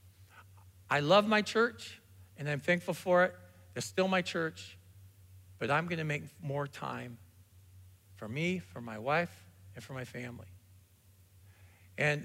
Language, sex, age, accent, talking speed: English, male, 50-69, American, 145 wpm